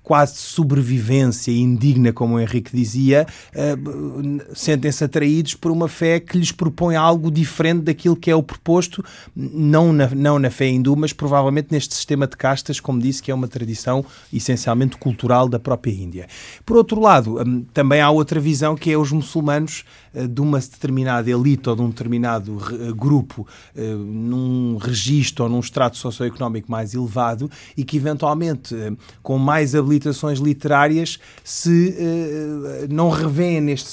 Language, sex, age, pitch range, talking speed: Portuguese, male, 30-49, 125-160 Hz, 155 wpm